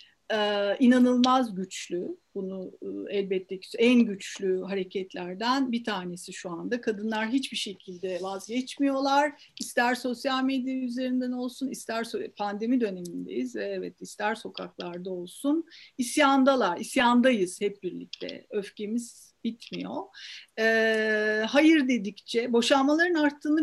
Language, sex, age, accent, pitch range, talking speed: Turkish, female, 50-69, native, 195-250 Hz, 105 wpm